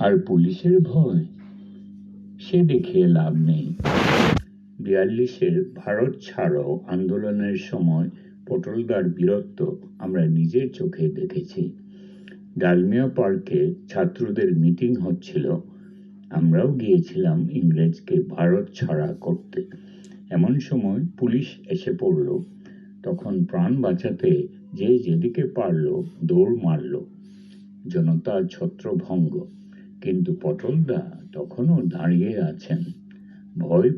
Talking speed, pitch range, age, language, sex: 85 wpm, 175-195 Hz, 60-79, English, male